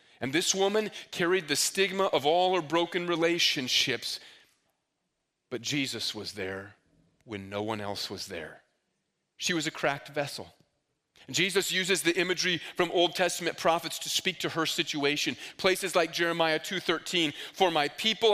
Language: English